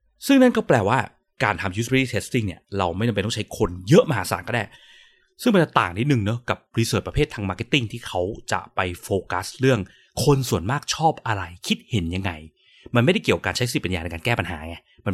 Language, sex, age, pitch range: Thai, male, 30-49, 95-135 Hz